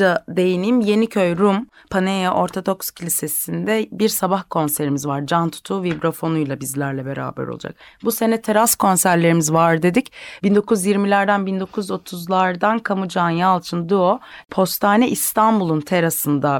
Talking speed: 110 wpm